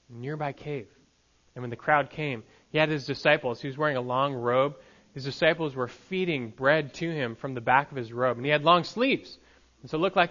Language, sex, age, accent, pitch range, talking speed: English, male, 20-39, American, 115-155 Hz, 235 wpm